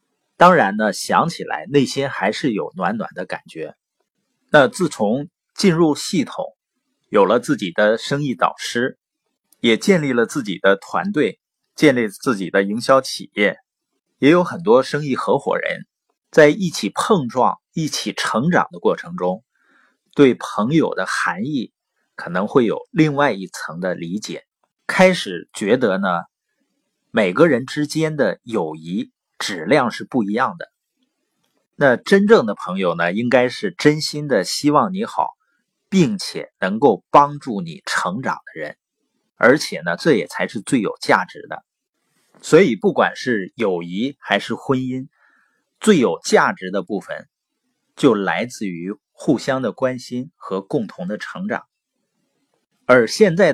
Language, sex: Chinese, male